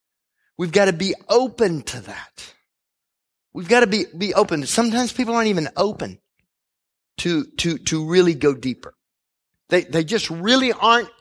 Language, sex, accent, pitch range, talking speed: English, male, American, 160-230 Hz, 155 wpm